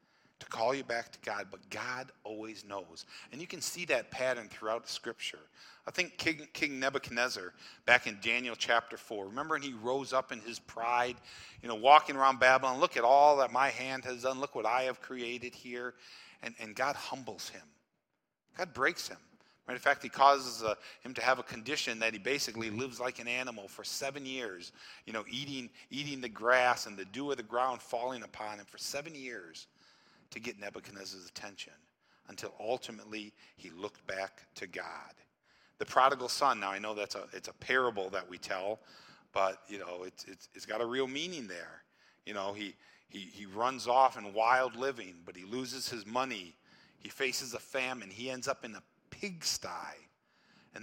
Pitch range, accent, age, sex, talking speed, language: 110-130 Hz, American, 40-59, male, 195 wpm, English